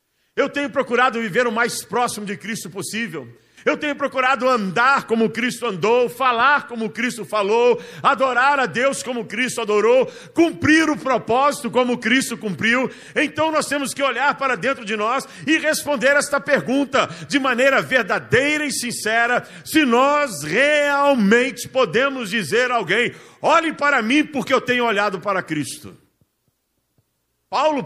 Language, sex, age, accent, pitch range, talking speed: Portuguese, male, 50-69, Brazilian, 205-275 Hz, 145 wpm